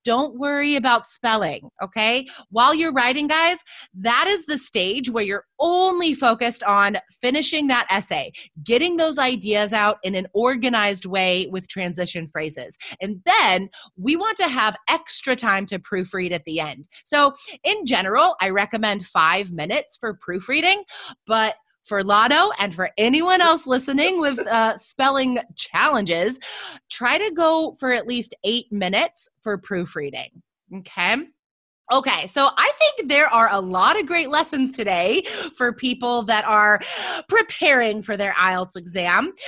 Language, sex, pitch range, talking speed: English, female, 195-300 Hz, 150 wpm